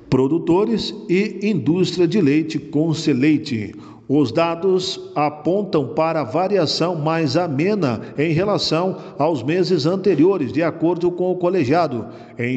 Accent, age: Brazilian, 50-69